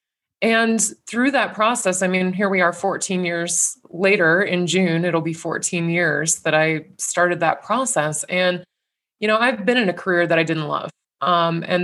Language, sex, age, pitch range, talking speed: English, female, 20-39, 165-190 Hz, 190 wpm